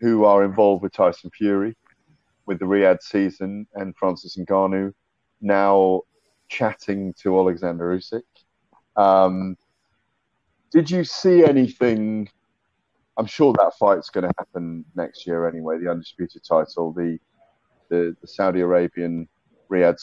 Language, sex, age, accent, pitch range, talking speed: English, male, 30-49, British, 85-105 Hz, 125 wpm